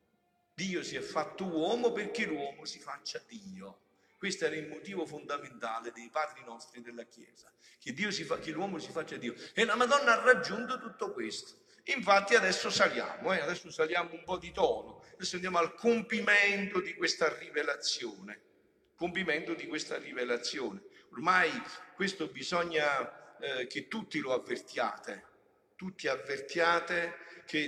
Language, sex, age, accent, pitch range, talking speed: Italian, male, 50-69, native, 165-235 Hz, 145 wpm